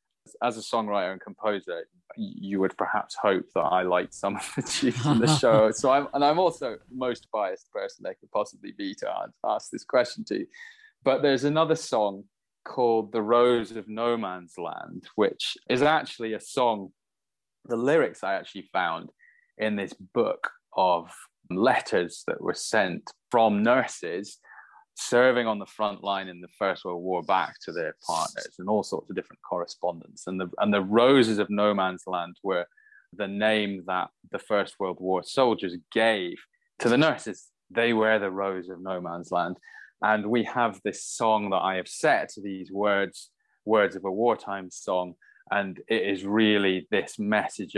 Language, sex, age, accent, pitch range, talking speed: English, male, 20-39, British, 95-135 Hz, 175 wpm